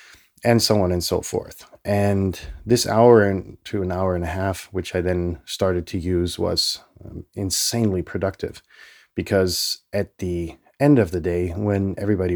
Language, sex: English, male